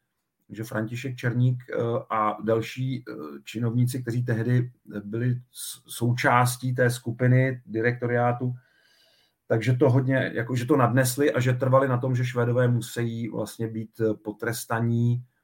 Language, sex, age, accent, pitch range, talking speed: Czech, male, 40-59, native, 110-130 Hz, 120 wpm